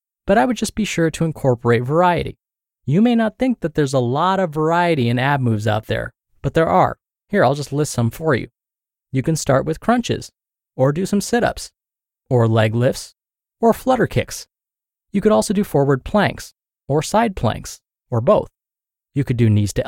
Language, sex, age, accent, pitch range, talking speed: English, male, 20-39, American, 125-170 Hz, 195 wpm